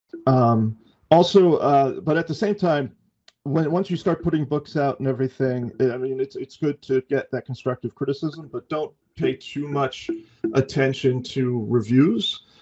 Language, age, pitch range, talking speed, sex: English, 40-59, 120-150 Hz, 165 wpm, male